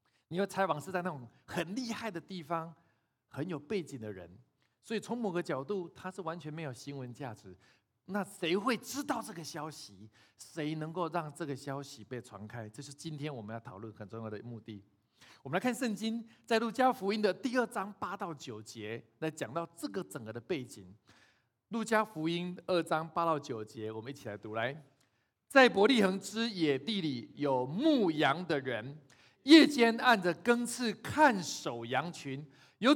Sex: male